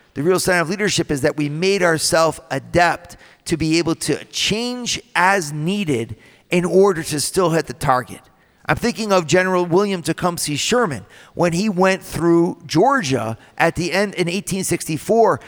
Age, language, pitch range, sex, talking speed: 50-69, English, 145-190 Hz, male, 165 wpm